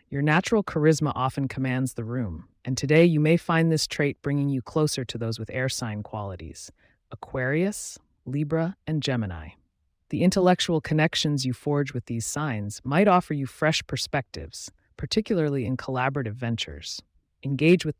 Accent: American